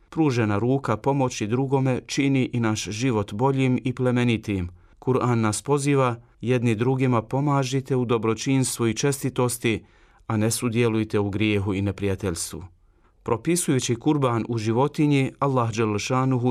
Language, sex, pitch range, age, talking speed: Croatian, male, 110-130 Hz, 40-59, 120 wpm